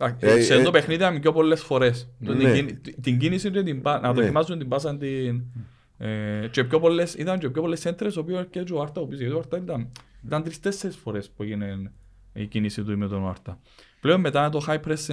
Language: Greek